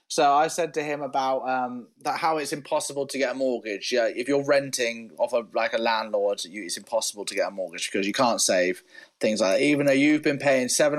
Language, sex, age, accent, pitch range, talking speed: English, male, 30-49, British, 135-195 Hz, 240 wpm